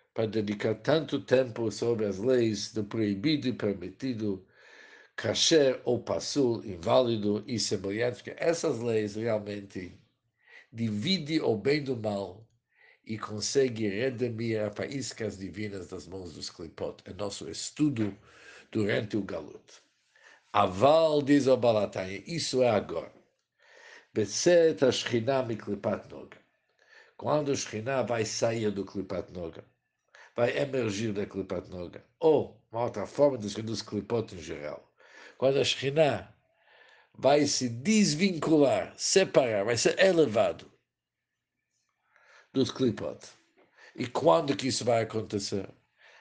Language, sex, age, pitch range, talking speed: Portuguese, male, 60-79, 105-135 Hz, 115 wpm